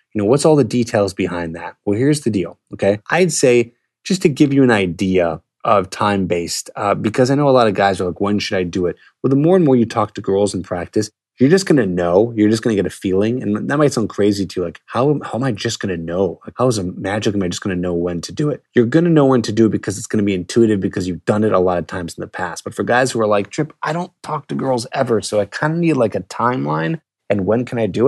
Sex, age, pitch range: male, 20-39, 95-125 Hz